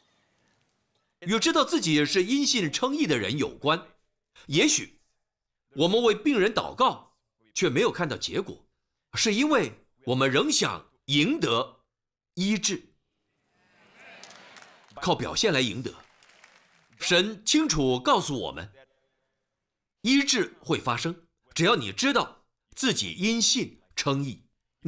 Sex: male